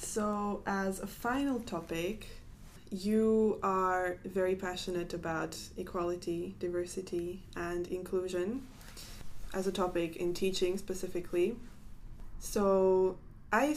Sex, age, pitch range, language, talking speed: female, 20-39, 180-200 Hz, English, 95 wpm